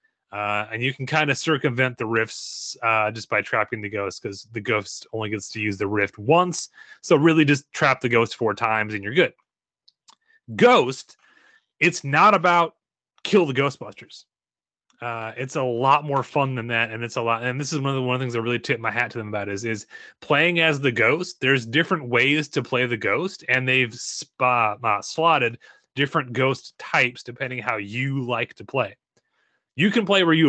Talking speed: 205 wpm